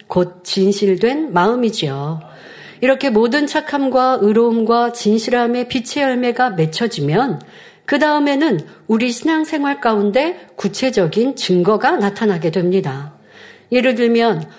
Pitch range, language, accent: 195-275 Hz, Korean, native